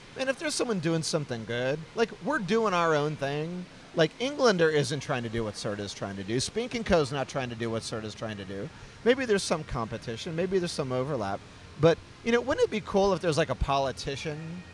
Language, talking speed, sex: English, 235 wpm, male